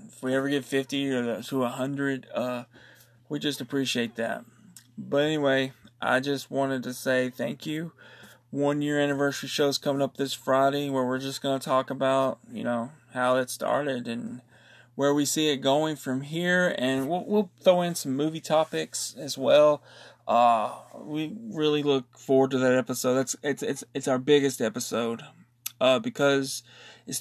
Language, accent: English, American